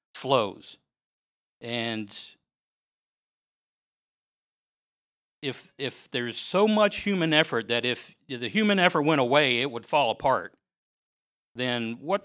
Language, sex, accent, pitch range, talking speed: English, male, American, 120-160 Hz, 110 wpm